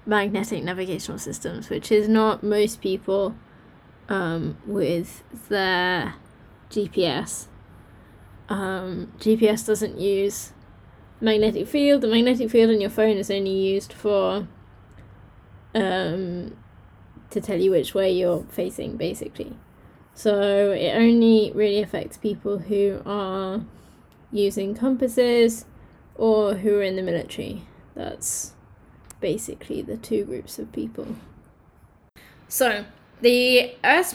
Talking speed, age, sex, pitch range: 110 wpm, 10-29, female, 195-225 Hz